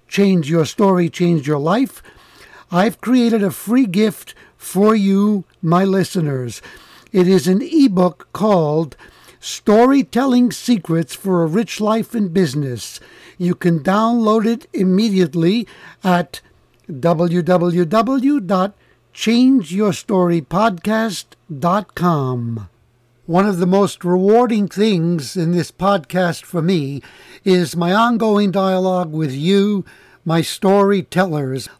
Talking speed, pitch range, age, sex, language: 100 wpm, 170-215 Hz, 60-79, male, English